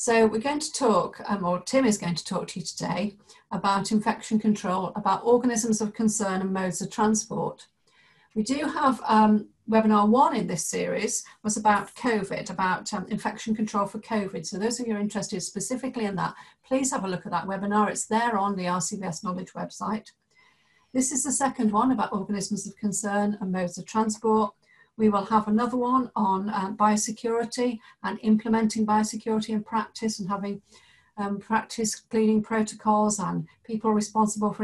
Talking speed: 180 wpm